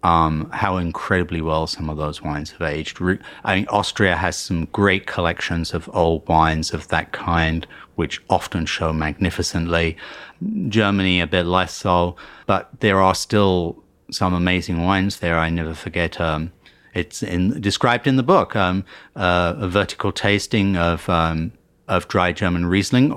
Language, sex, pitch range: English, male, 85-100 Hz